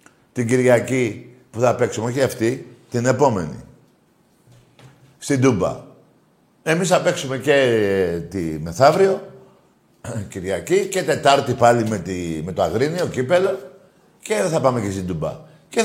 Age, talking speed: 50-69, 130 wpm